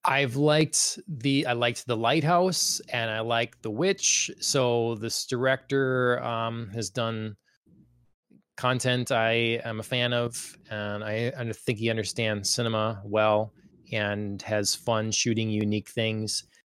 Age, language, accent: 20-39, English, American